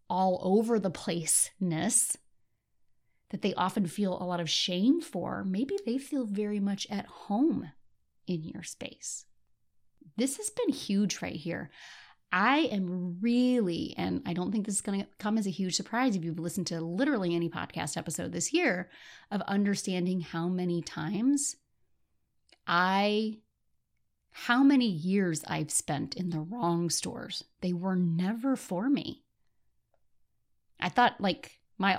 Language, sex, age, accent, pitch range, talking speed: English, female, 30-49, American, 170-220 Hz, 150 wpm